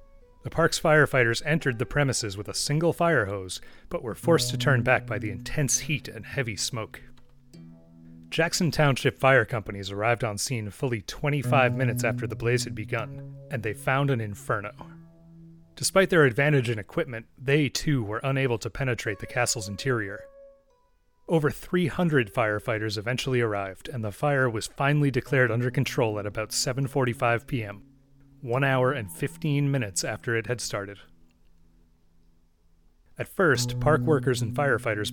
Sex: male